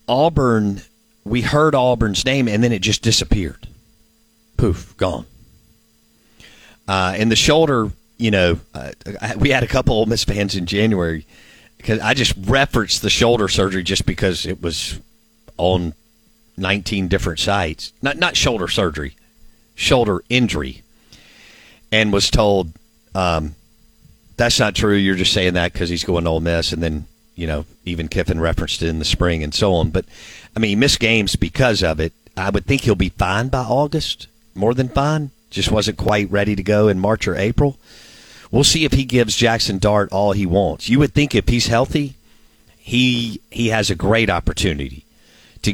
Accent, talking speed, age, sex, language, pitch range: American, 175 wpm, 40-59, male, English, 90-115 Hz